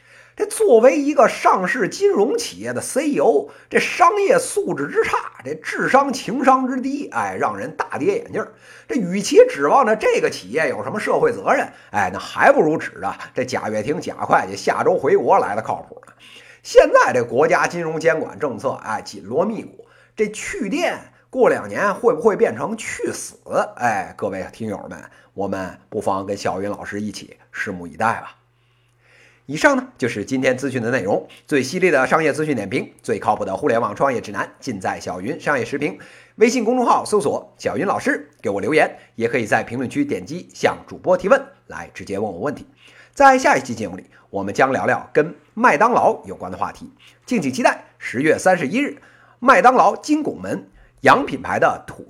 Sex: male